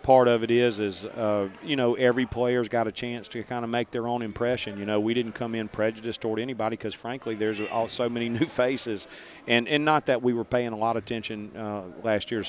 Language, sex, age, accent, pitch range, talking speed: English, male, 40-59, American, 110-125 Hz, 245 wpm